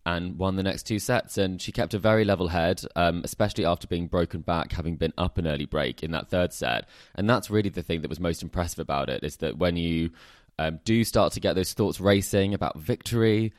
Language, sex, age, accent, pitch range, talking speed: English, male, 20-39, British, 80-95 Hz, 240 wpm